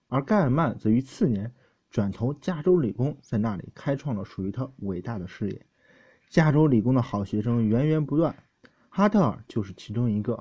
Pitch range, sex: 105-155 Hz, male